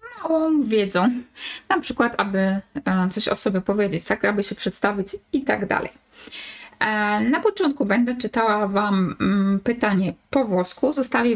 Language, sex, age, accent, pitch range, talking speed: Polish, female, 20-39, native, 200-255 Hz, 130 wpm